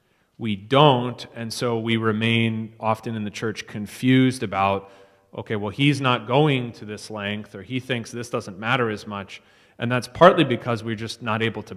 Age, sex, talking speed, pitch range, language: 30-49, male, 190 wpm, 100-120 Hz, English